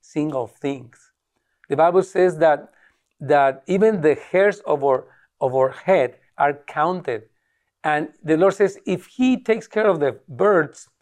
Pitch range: 135-190 Hz